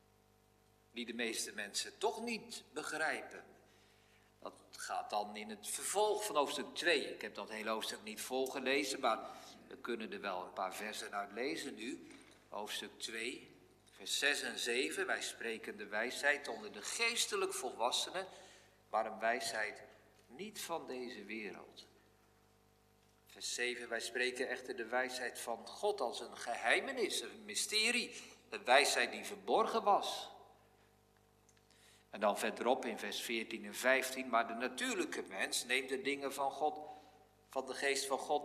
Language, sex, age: Dutch, male, 50-69